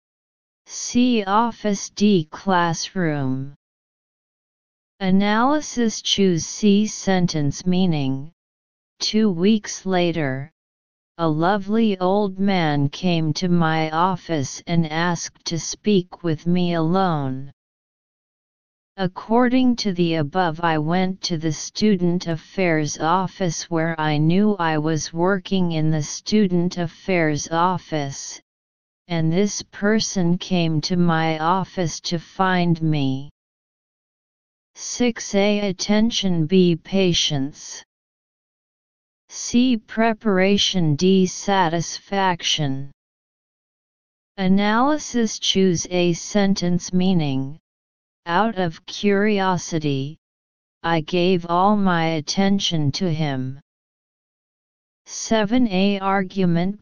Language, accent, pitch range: English, American, 155-195 Hz